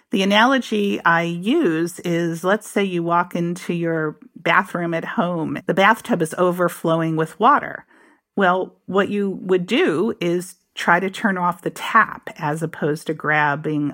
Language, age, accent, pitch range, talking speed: English, 50-69, American, 160-220 Hz, 155 wpm